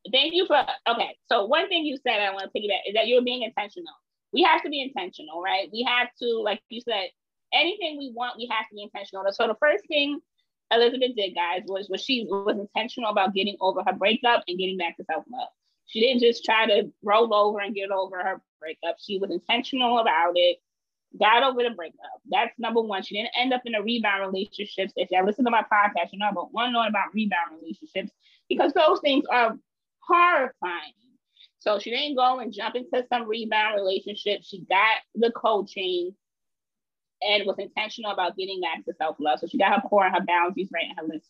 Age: 20-39